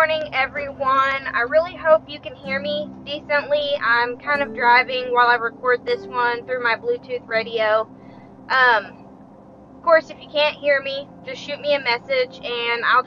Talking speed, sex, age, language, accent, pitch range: 180 wpm, female, 20-39, English, American, 240-295 Hz